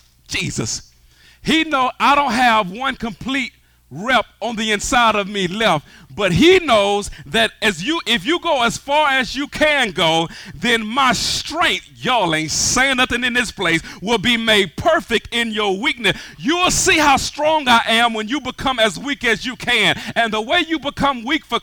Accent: American